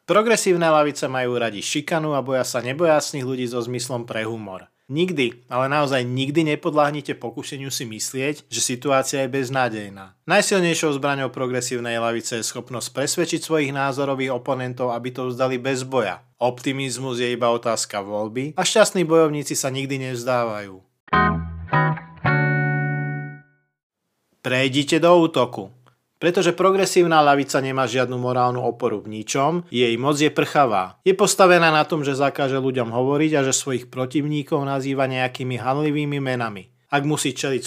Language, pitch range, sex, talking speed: Slovak, 125-150 Hz, male, 140 wpm